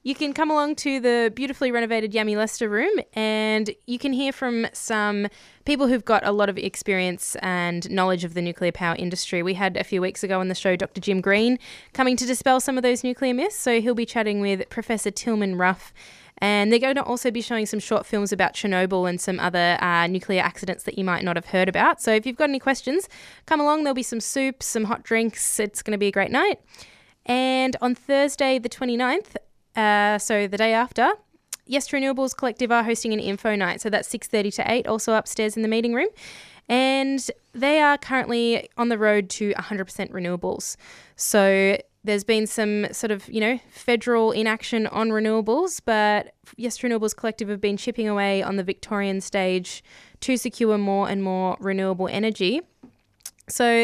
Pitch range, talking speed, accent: 200-250 Hz, 200 wpm, Australian